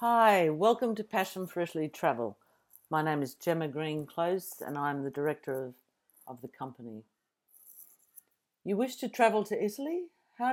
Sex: female